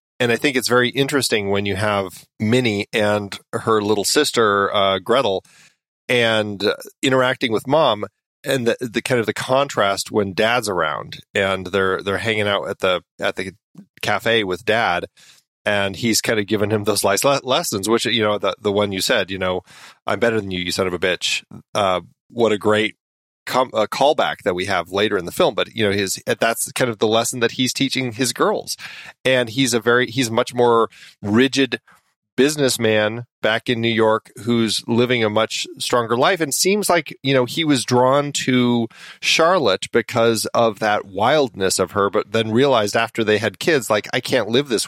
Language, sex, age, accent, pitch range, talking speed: English, male, 30-49, American, 105-130 Hz, 195 wpm